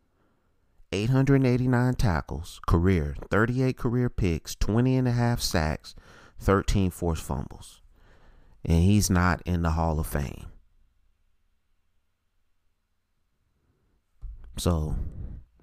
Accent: American